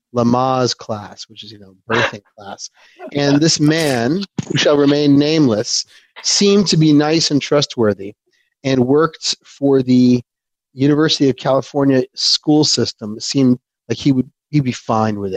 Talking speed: 150 wpm